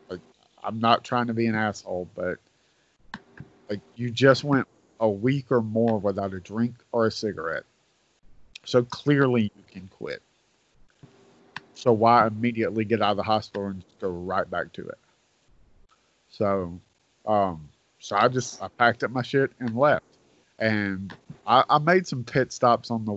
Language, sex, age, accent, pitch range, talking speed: English, male, 40-59, American, 100-115 Hz, 165 wpm